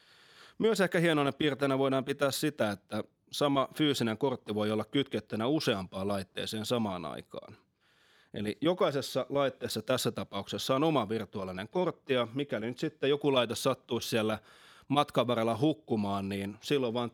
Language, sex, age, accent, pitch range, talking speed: Finnish, male, 30-49, native, 110-140 Hz, 140 wpm